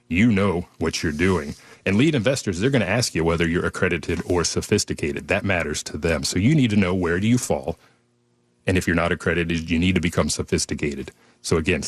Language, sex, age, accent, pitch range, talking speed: English, male, 30-49, American, 80-100 Hz, 215 wpm